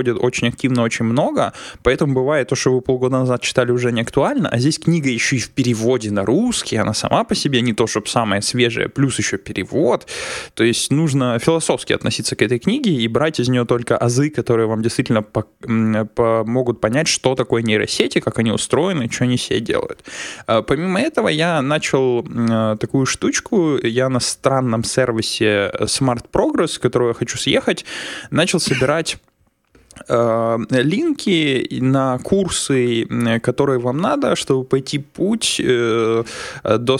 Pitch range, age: 115-135 Hz, 20-39